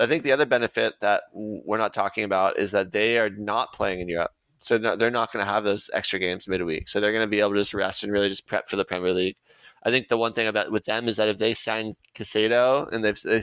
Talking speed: 280 wpm